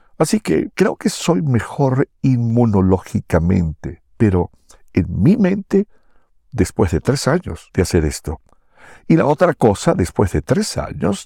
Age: 60-79